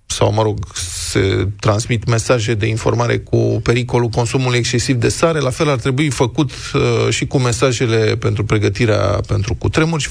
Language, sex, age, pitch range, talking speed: Romanian, male, 20-39, 110-140 Hz, 165 wpm